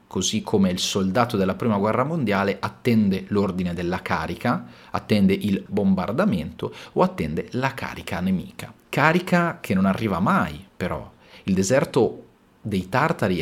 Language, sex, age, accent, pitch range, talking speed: Italian, male, 40-59, native, 95-115 Hz, 135 wpm